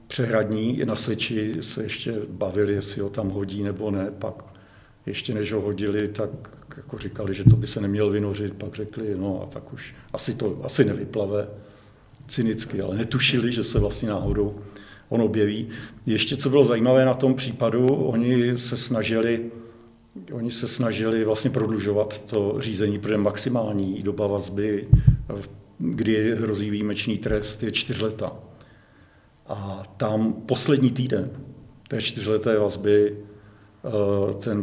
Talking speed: 140 wpm